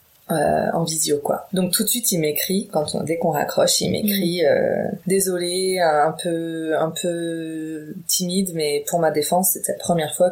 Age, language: 20-39, French